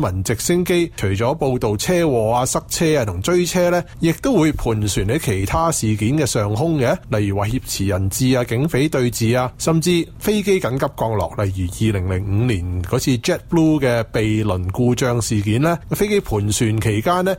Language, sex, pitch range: Chinese, male, 110-165 Hz